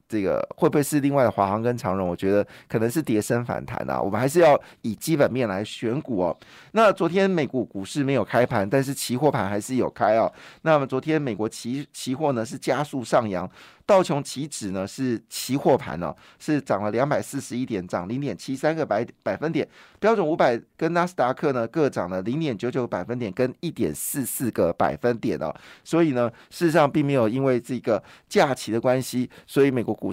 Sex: male